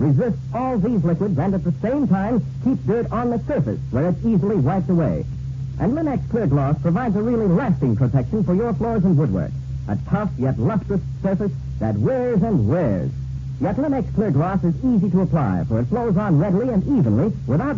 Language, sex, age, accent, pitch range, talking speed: English, male, 50-69, American, 130-185 Hz, 195 wpm